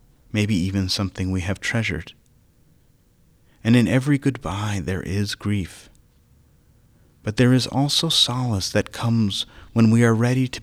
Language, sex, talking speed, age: English, male, 140 wpm, 30-49